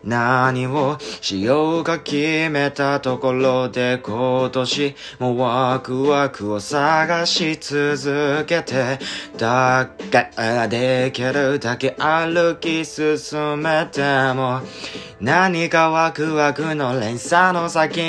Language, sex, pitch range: Japanese, male, 130-165 Hz